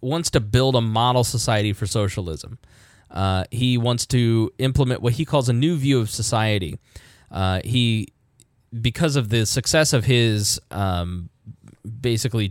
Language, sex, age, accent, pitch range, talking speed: English, male, 20-39, American, 105-130 Hz, 150 wpm